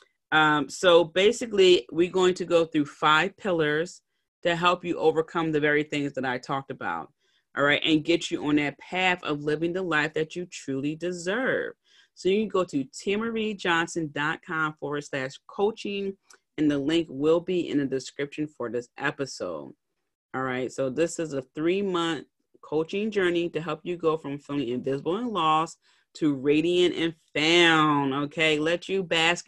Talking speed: 170 wpm